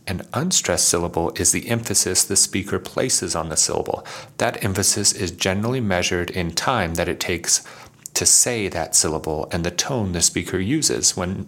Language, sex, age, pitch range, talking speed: English, male, 30-49, 90-110 Hz, 175 wpm